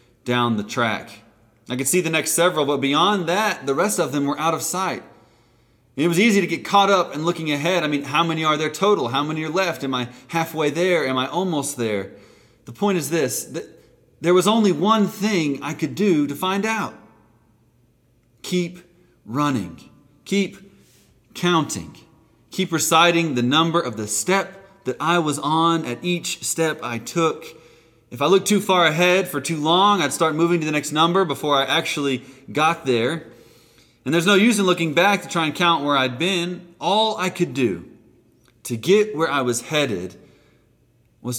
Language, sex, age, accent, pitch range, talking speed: English, male, 30-49, American, 120-175 Hz, 190 wpm